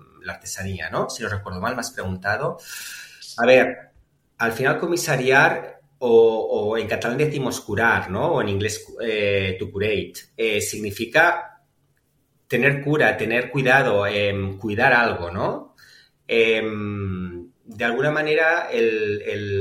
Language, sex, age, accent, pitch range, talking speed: Spanish, male, 30-49, Spanish, 105-140 Hz, 135 wpm